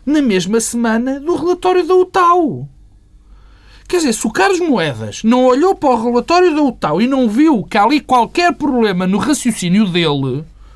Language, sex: Portuguese, male